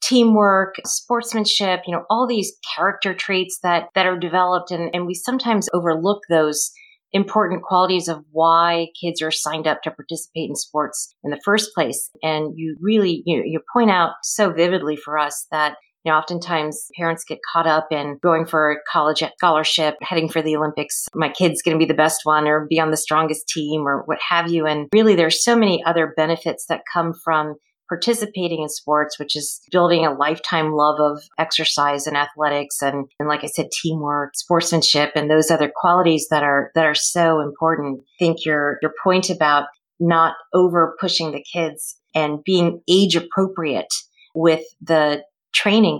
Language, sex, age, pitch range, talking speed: English, female, 40-59, 150-180 Hz, 185 wpm